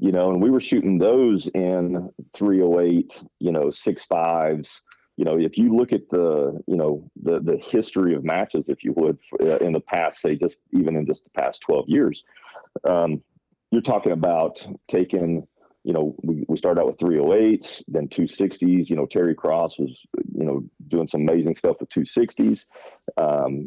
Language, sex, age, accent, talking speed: English, male, 40-59, American, 180 wpm